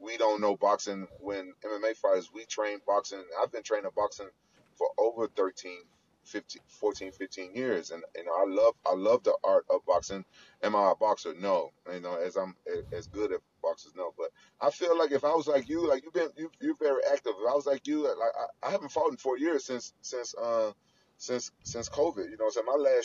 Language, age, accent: English, 30-49, American